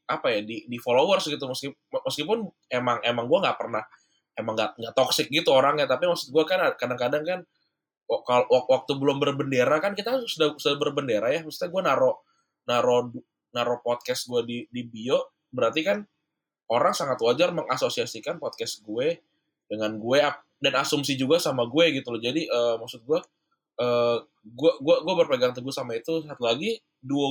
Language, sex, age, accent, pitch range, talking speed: Indonesian, male, 20-39, native, 120-160 Hz, 165 wpm